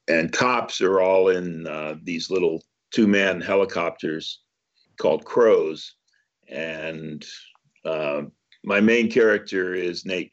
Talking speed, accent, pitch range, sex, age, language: 110 wpm, American, 80-105 Hz, male, 50-69, English